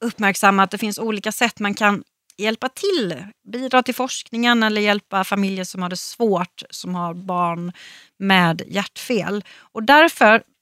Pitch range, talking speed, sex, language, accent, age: 190-240 Hz, 155 wpm, female, Swedish, native, 30-49